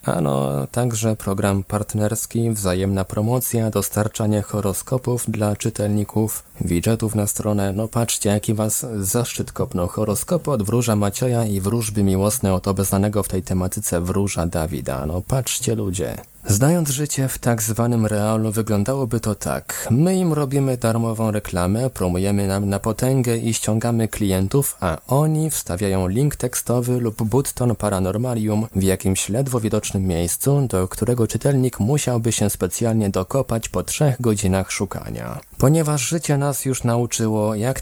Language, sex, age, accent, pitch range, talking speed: Polish, male, 20-39, native, 100-120 Hz, 140 wpm